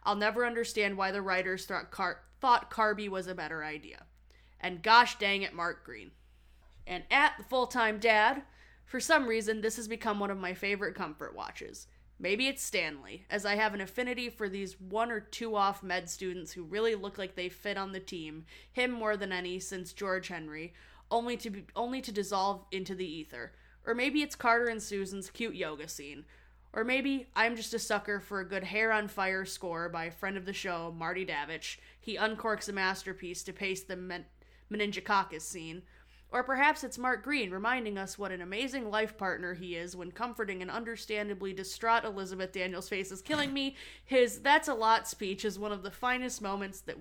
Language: English